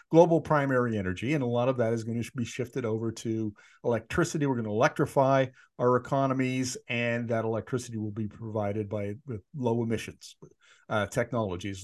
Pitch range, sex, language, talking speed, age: 115-155 Hz, male, English, 165 wpm, 50-69